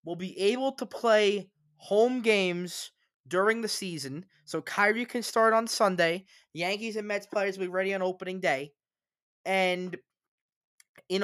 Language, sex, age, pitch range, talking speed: English, male, 20-39, 160-210 Hz, 155 wpm